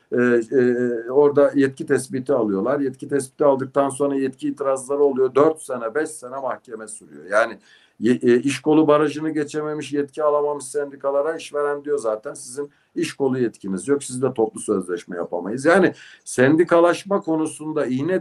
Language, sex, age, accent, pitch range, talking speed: Turkish, male, 60-79, native, 115-150 Hz, 150 wpm